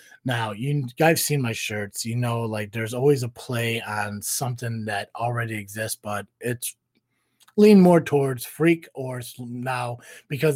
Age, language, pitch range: 20-39, English, 110-145 Hz